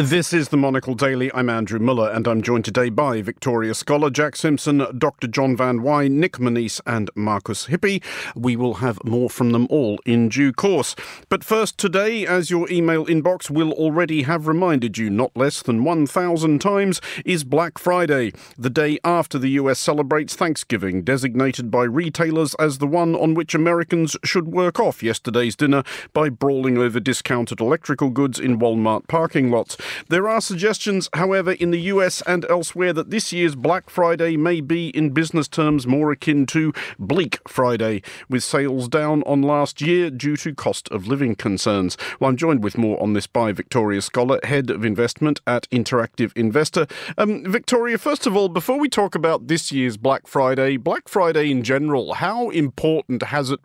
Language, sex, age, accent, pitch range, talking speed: English, male, 50-69, British, 125-170 Hz, 180 wpm